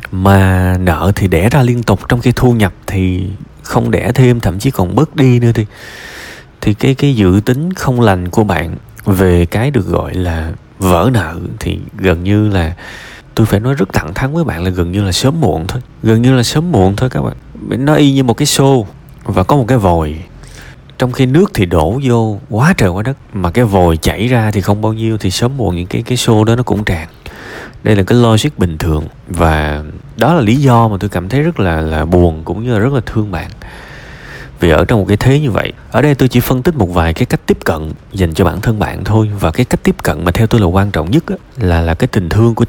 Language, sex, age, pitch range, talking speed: Vietnamese, male, 20-39, 90-125 Hz, 250 wpm